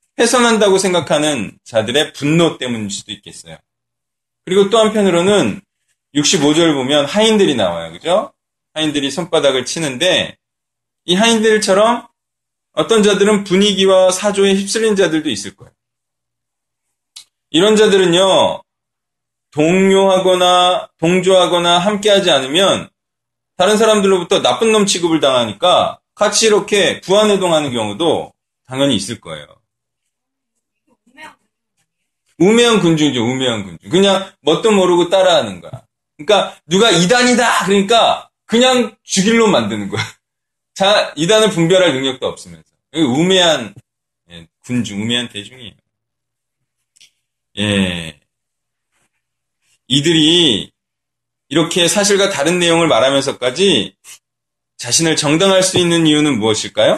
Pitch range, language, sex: 135-205 Hz, Korean, male